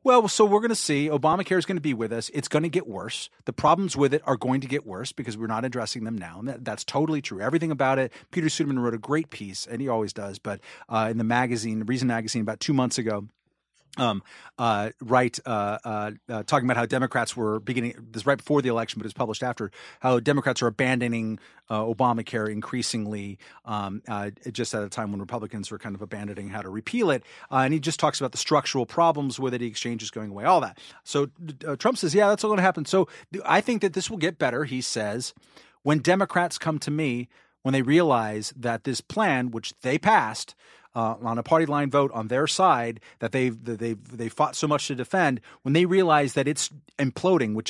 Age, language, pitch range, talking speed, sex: 40-59, English, 115-150 Hz, 230 wpm, male